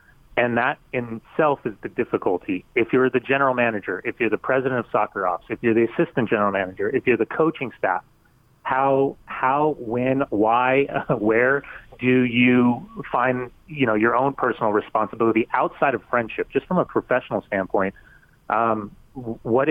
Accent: American